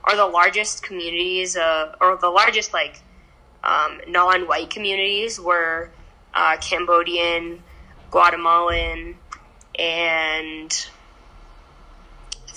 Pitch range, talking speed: 170-210 Hz, 85 wpm